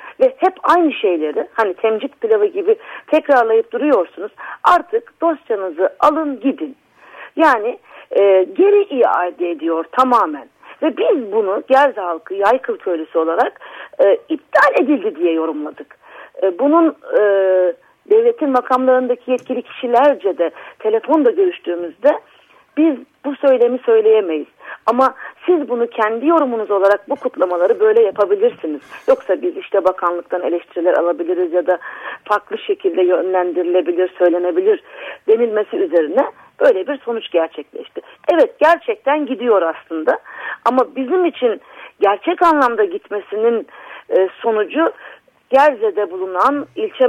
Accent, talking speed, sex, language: native, 115 wpm, female, Turkish